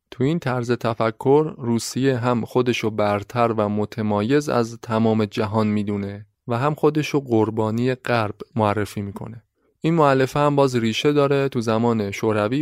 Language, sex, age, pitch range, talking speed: Persian, male, 20-39, 110-130 Hz, 145 wpm